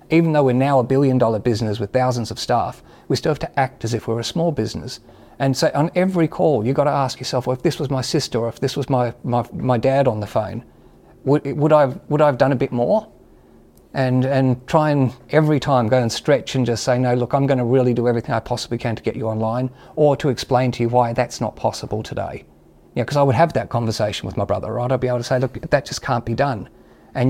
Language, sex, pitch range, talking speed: English, male, 120-145 Hz, 270 wpm